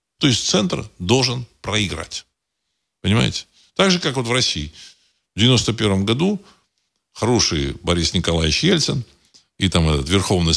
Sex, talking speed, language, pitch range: male, 135 wpm, Russian, 85-120 Hz